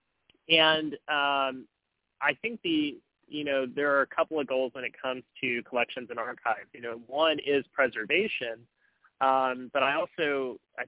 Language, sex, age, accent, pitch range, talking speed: English, male, 30-49, American, 125-150 Hz, 165 wpm